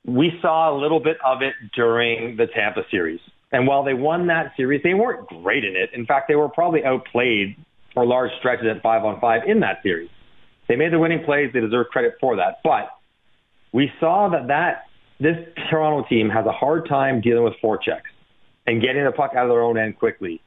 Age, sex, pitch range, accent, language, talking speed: 40-59, male, 120-155 Hz, American, English, 215 wpm